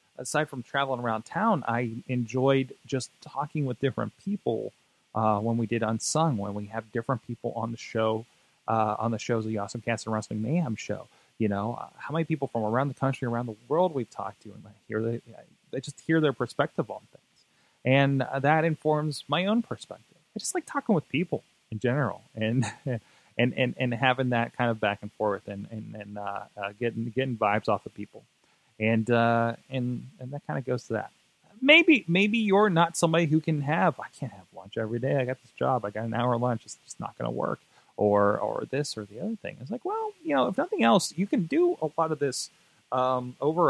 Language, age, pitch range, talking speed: English, 30-49, 110-145 Hz, 220 wpm